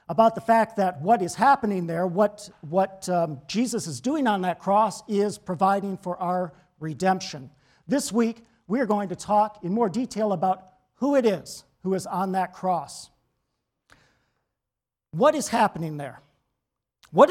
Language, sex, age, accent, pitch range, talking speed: English, male, 50-69, American, 175-230 Hz, 160 wpm